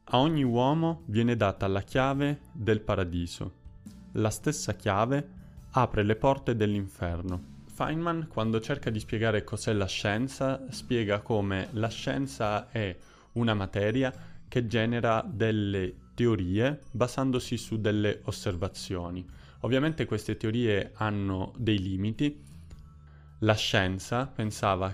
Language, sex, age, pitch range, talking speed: Italian, male, 20-39, 95-115 Hz, 115 wpm